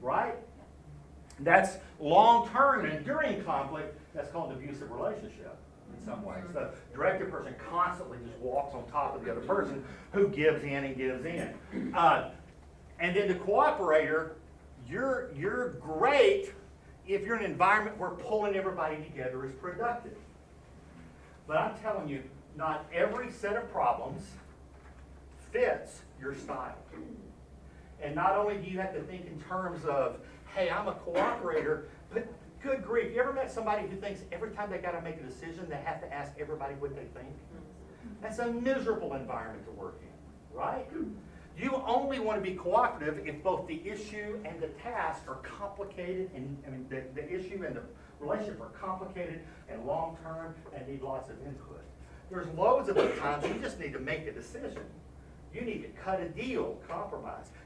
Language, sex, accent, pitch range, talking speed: English, male, American, 130-205 Hz, 170 wpm